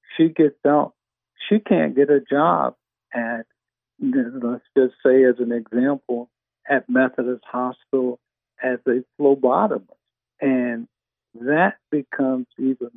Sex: male